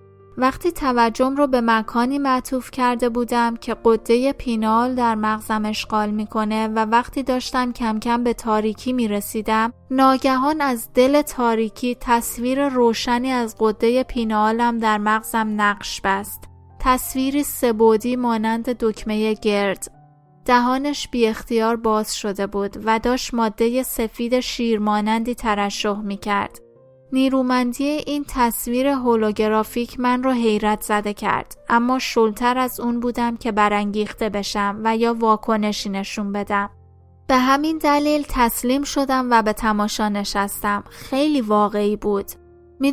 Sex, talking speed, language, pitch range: female, 125 wpm, Persian, 215-255 Hz